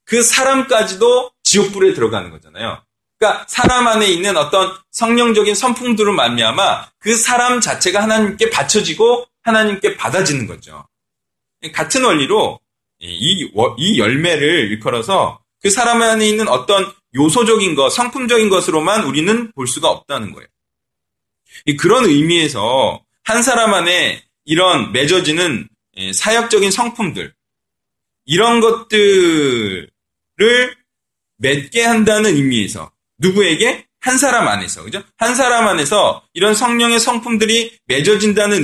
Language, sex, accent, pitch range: Korean, male, native, 145-230 Hz